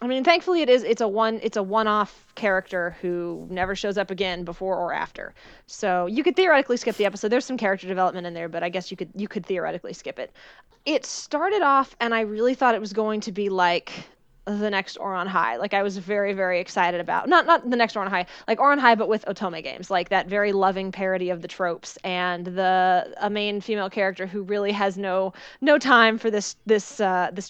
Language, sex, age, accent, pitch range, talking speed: English, female, 20-39, American, 185-220 Hz, 230 wpm